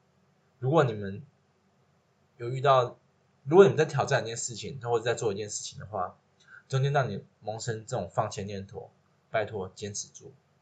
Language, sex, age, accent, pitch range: Chinese, male, 20-39, native, 110-150 Hz